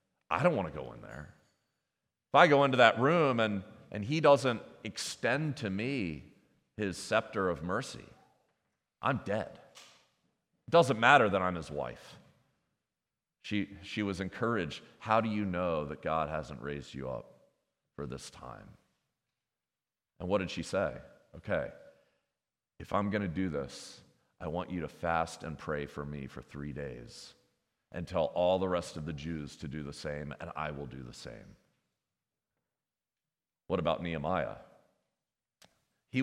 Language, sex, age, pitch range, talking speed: English, male, 40-59, 80-110 Hz, 160 wpm